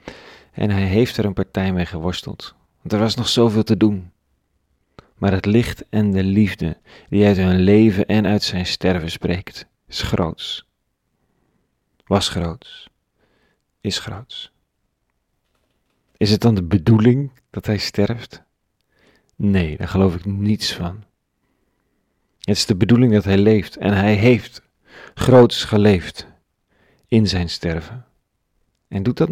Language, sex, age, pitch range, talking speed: Dutch, male, 40-59, 95-115 Hz, 140 wpm